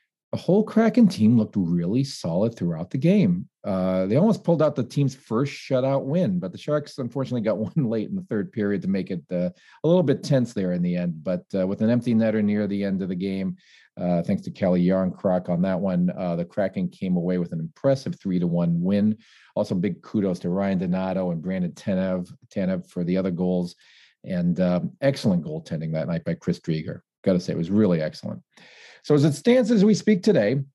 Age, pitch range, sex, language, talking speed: 40-59, 95-155 Hz, male, English, 215 wpm